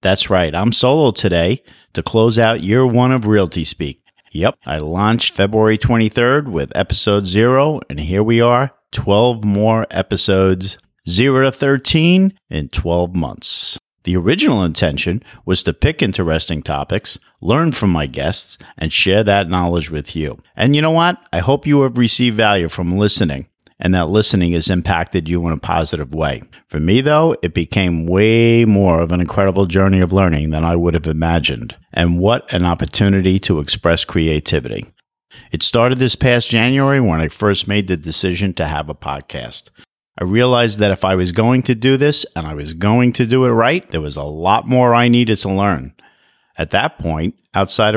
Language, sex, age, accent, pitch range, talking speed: English, male, 50-69, American, 85-115 Hz, 180 wpm